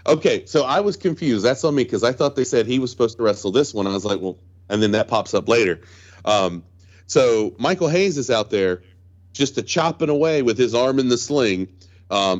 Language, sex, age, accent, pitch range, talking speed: English, male, 40-59, American, 95-125 Hz, 225 wpm